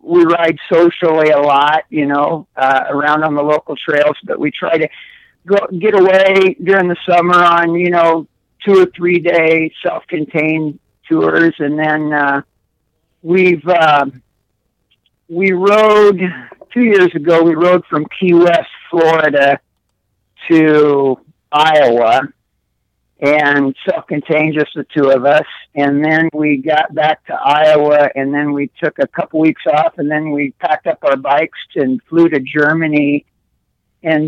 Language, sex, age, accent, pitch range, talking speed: English, male, 50-69, American, 145-170 Hz, 145 wpm